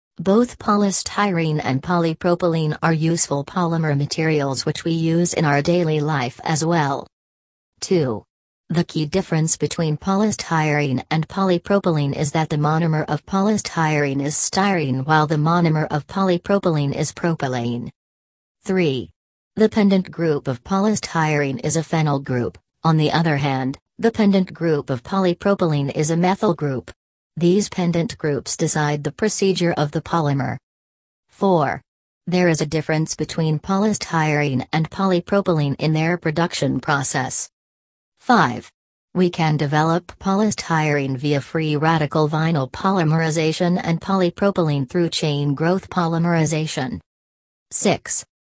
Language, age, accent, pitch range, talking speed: English, 40-59, American, 145-175 Hz, 125 wpm